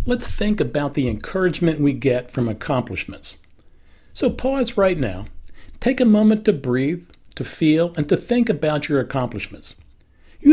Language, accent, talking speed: English, American, 155 wpm